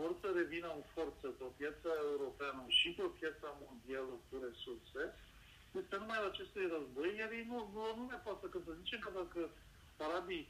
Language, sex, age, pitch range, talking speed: Romanian, male, 50-69, 125-190 Hz, 185 wpm